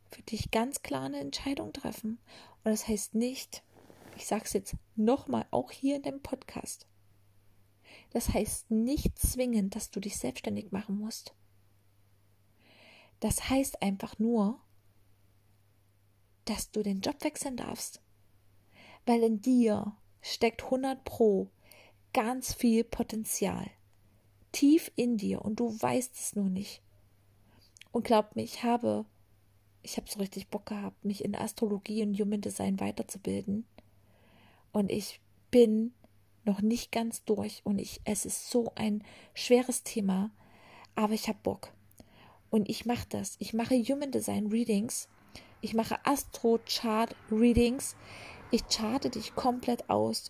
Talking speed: 135 wpm